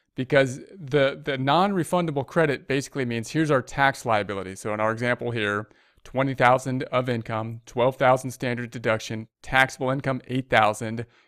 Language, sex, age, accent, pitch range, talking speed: English, male, 40-59, American, 115-140 Hz, 135 wpm